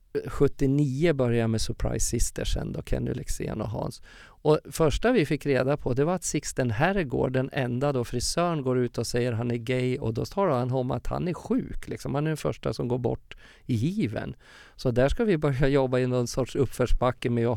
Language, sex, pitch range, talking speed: Swedish, male, 120-150 Hz, 225 wpm